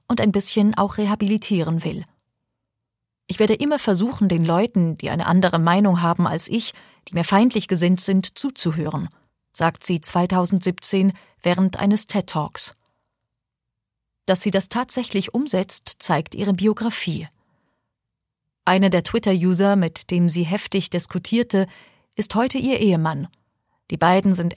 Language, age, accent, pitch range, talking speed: German, 30-49, German, 170-205 Hz, 130 wpm